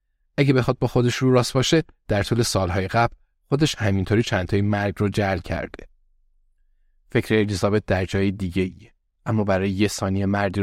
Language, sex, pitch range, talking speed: Persian, male, 95-110 Hz, 165 wpm